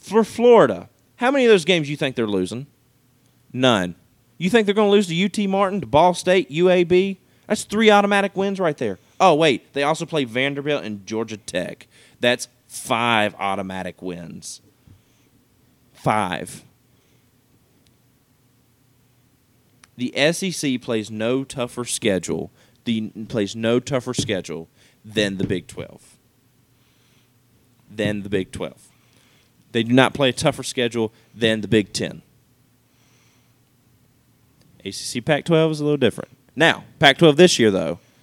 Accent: American